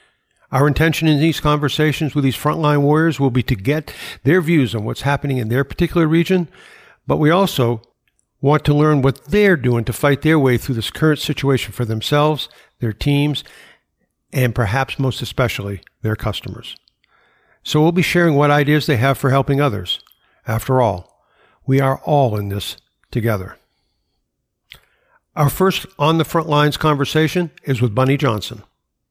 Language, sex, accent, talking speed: English, male, American, 165 wpm